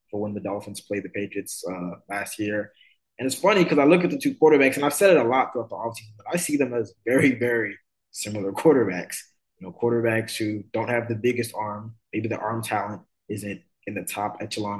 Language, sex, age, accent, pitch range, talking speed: English, male, 20-39, American, 105-135 Hz, 225 wpm